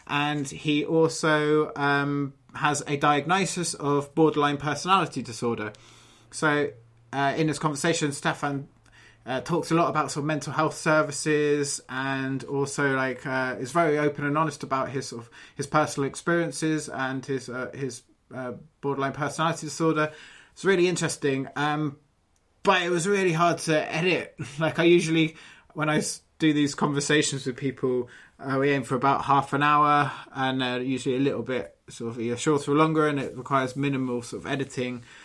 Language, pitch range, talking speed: English, 135-155 Hz, 170 wpm